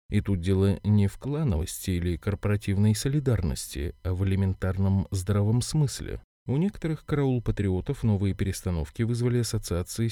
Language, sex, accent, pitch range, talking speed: Russian, male, native, 95-125 Hz, 130 wpm